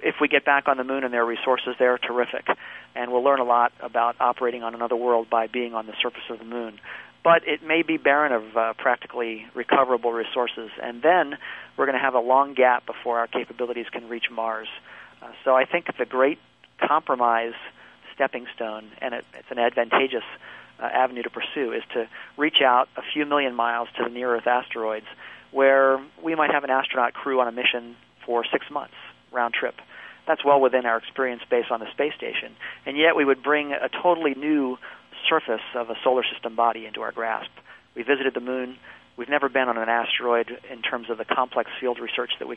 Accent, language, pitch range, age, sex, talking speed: American, English, 115-135 Hz, 40-59, male, 205 wpm